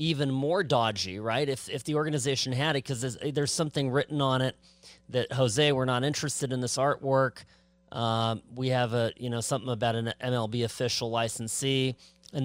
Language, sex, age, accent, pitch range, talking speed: English, male, 40-59, American, 120-150 Hz, 185 wpm